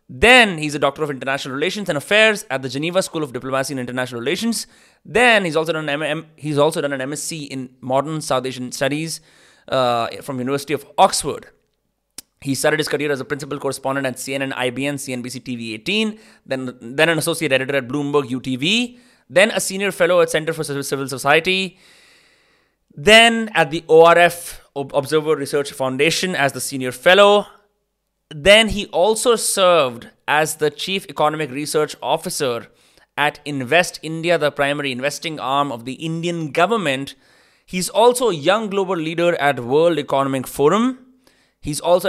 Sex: male